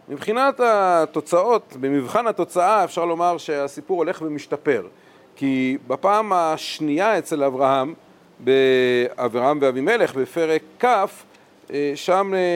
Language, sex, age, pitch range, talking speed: Hebrew, male, 40-59, 150-210 Hz, 90 wpm